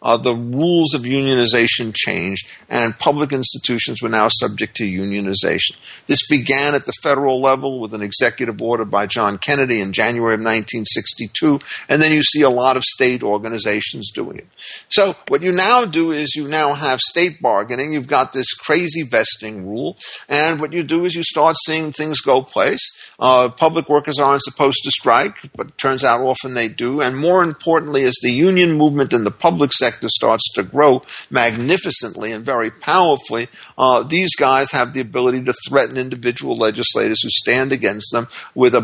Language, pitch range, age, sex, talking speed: English, 120-150 Hz, 50-69, male, 180 wpm